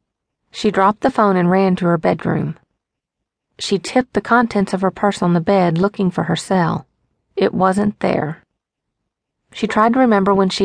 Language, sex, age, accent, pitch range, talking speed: English, female, 40-59, American, 175-205 Hz, 180 wpm